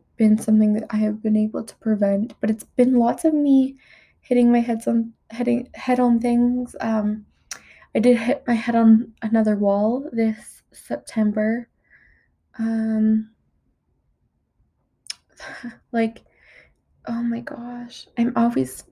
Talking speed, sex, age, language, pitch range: 120 wpm, female, 20-39, English, 210-235 Hz